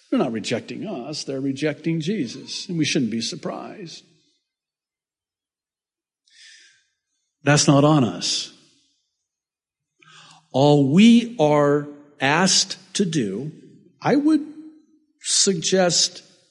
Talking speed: 90 wpm